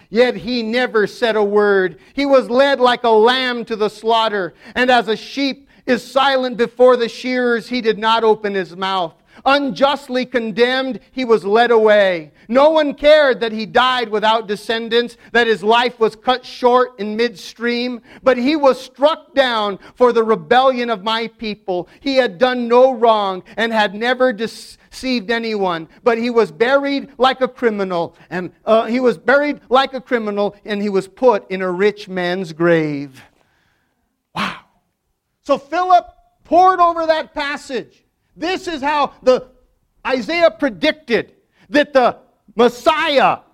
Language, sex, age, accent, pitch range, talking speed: English, male, 40-59, American, 210-275 Hz, 155 wpm